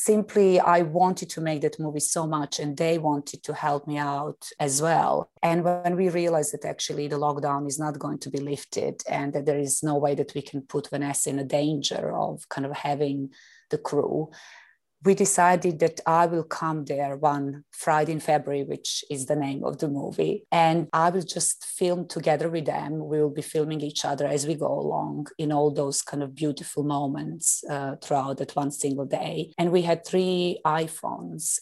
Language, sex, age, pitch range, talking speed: English, female, 30-49, 145-160 Hz, 200 wpm